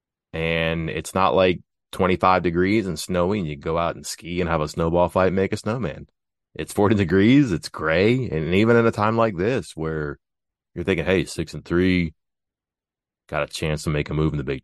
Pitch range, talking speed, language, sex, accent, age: 85-100 Hz, 210 wpm, English, male, American, 30-49